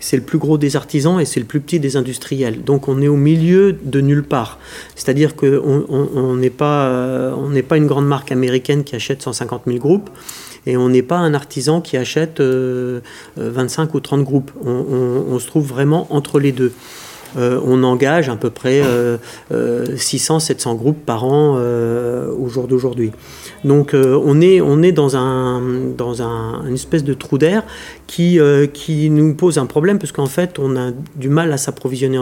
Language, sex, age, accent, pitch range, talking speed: French, male, 40-59, French, 130-155 Hz, 200 wpm